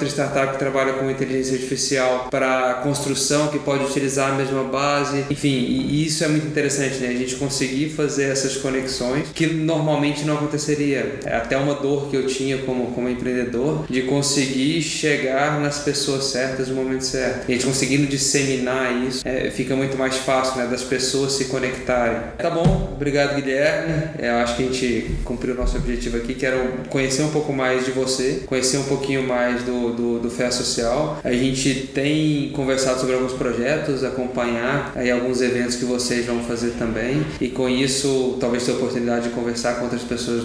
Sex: male